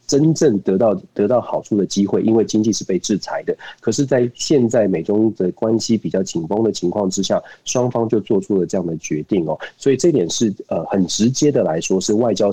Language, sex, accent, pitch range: Chinese, male, native, 100-135 Hz